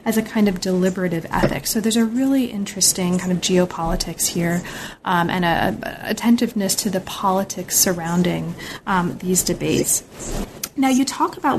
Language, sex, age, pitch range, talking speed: English, female, 30-49, 190-225 Hz, 160 wpm